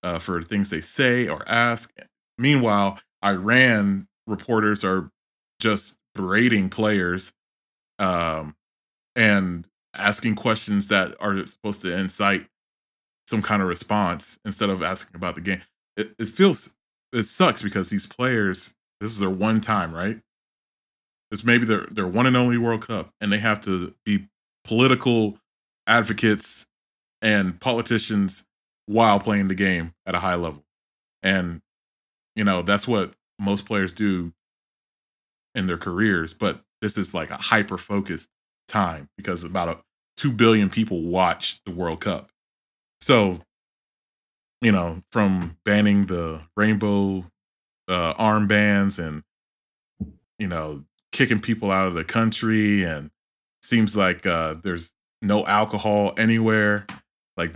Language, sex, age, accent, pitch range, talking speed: English, male, 20-39, American, 90-110 Hz, 135 wpm